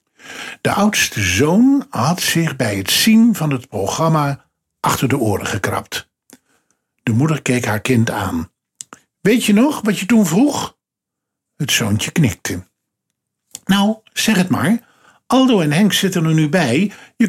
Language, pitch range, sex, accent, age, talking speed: Dutch, 110-185 Hz, male, Dutch, 50-69, 150 wpm